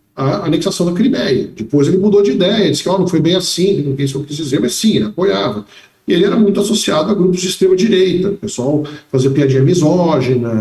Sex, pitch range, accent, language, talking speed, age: male, 140-195 Hz, Brazilian, Portuguese, 220 wpm, 50-69